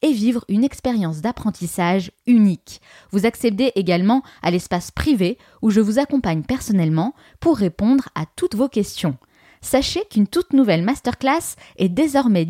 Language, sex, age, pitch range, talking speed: French, female, 20-39, 185-275 Hz, 145 wpm